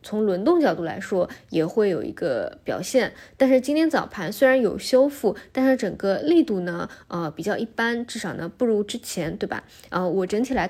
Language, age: Chinese, 20-39